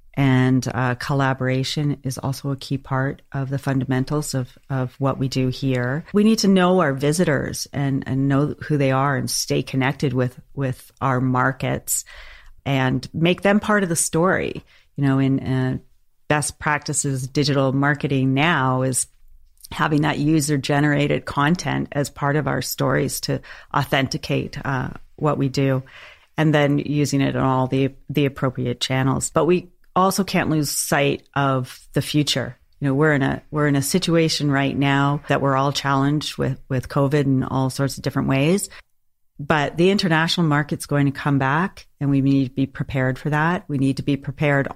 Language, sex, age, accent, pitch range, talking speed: English, female, 40-59, American, 135-150 Hz, 180 wpm